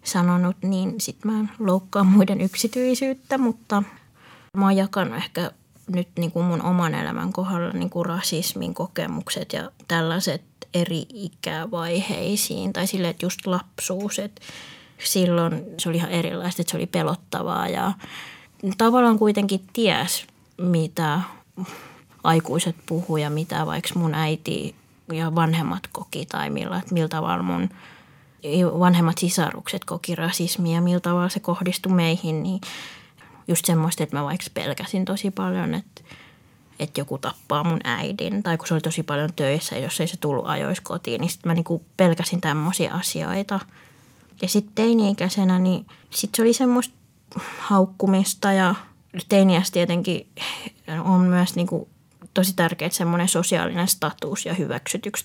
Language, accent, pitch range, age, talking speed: Finnish, native, 165-195 Hz, 20-39, 140 wpm